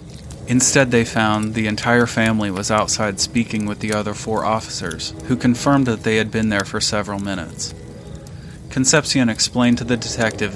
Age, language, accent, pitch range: 30-49, English, American, 105-120 Hz